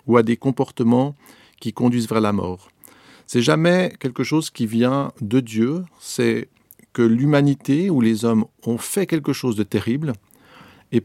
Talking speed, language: 165 wpm, French